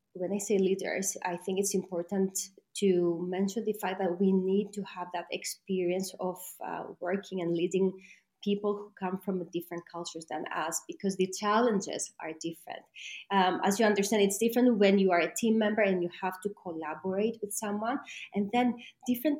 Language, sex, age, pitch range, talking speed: English, female, 20-39, 185-215 Hz, 185 wpm